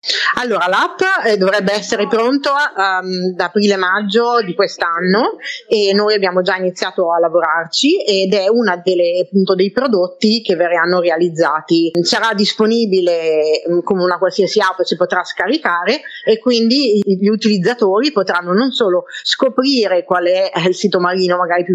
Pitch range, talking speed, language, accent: 175-215 Hz, 140 wpm, Italian, native